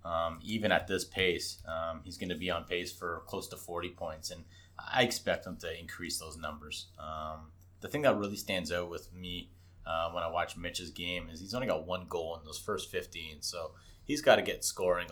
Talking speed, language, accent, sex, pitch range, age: 220 wpm, English, American, male, 85-90 Hz, 30-49